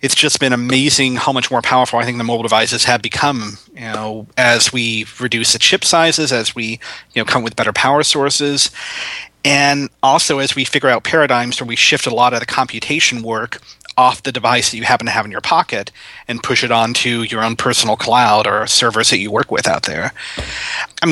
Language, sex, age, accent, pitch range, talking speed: English, male, 30-49, American, 115-135 Hz, 215 wpm